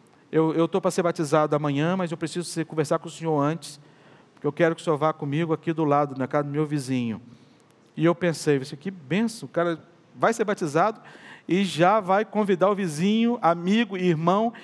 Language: Portuguese